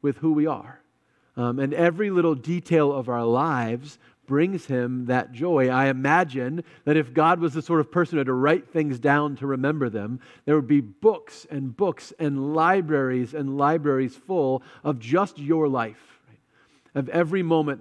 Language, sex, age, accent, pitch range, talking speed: English, male, 40-59, American, 125-170 Hz, 180 wpm